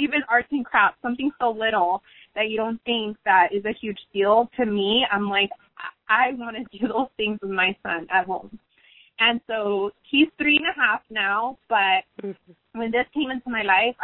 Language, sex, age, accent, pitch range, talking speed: English, female, 20-39, American, 200-245 Hz, 195 wpm